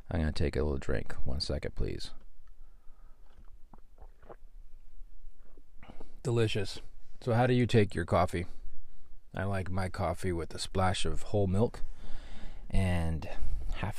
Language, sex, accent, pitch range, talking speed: English, male, American, 80-105 Hz, 130 wpm